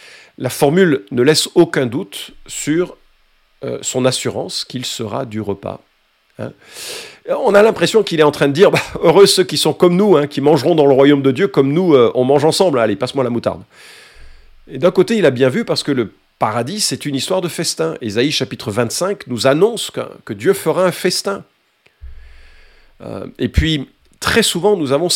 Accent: French